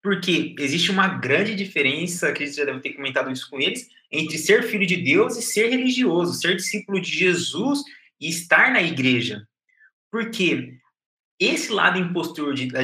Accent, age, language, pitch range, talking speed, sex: Brazilian, 20-39, Portuguese, 150-205 Hz, 175 wpm, male